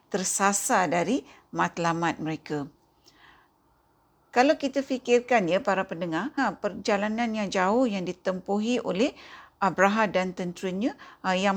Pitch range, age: 195-255 Hz, 50-69